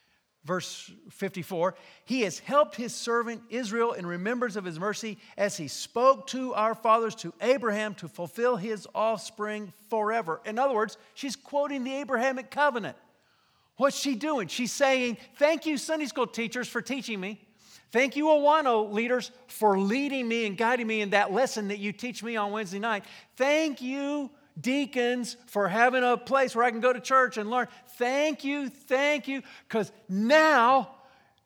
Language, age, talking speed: English, 50-69, 170 wpm